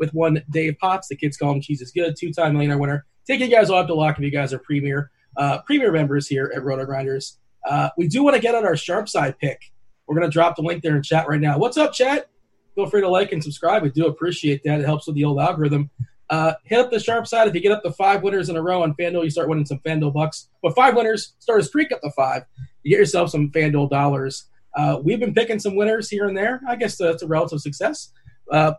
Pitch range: 145-205 Hz